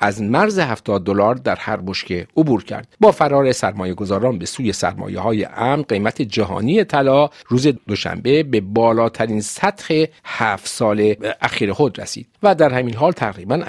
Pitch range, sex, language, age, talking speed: 100-140 Hz, male, Persian, 50-69, 155 wpm